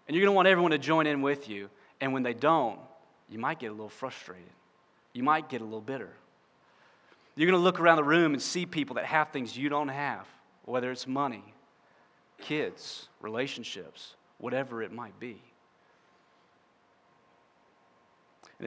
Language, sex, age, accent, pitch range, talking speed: English, male, 30-49, American, 125-160 Hz, 170 wpm